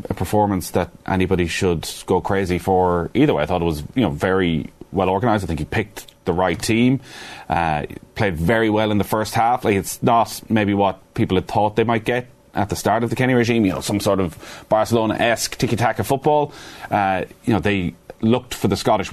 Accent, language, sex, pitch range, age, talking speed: Irish, English, male, 95-115 Hz, 30-49, 220 wpm